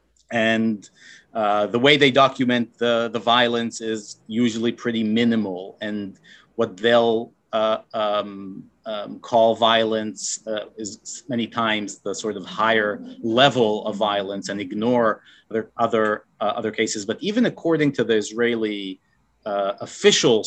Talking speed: 135 wpm